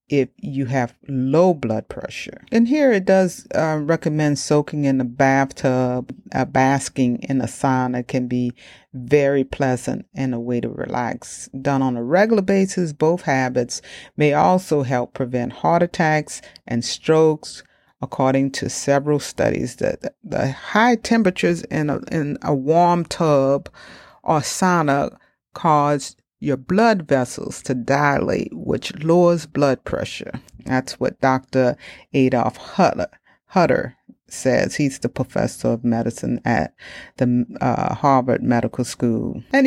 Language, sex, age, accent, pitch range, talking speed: English, female, 40-59, American, 130-165 Hz, 140 wpm